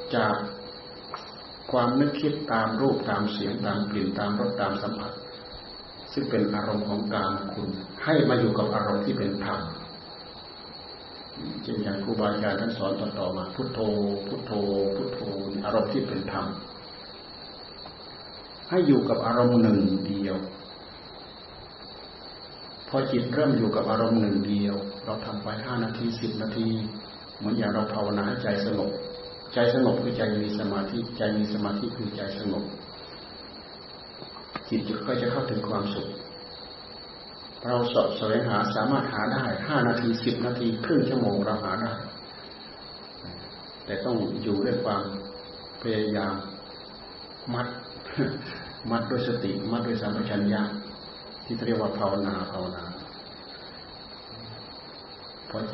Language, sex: Thai, male